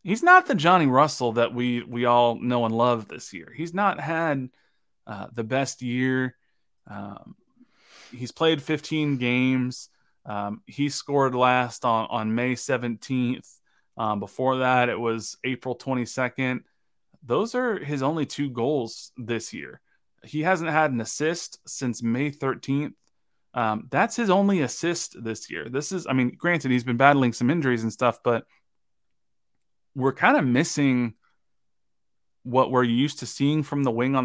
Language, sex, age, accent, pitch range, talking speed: English, male, 20-39, American, 115-145 Hz, 155 wpm